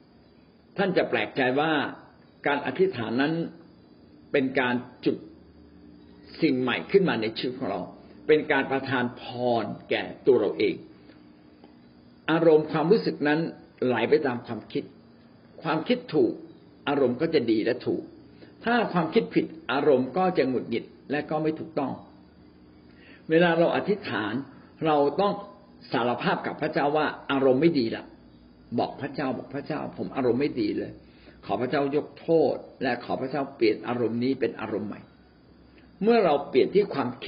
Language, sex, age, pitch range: Thai, male, 60-79, 125-195 Hz